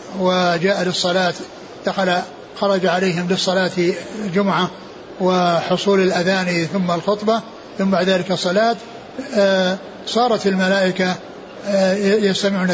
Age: 60-79